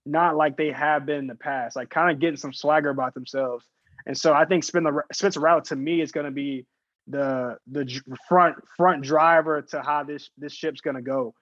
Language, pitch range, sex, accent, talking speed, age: English, 150-175 Hz, male, American, 215 wpm, 20-39